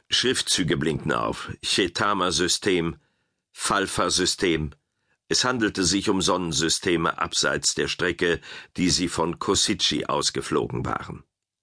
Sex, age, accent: male, 50-69, German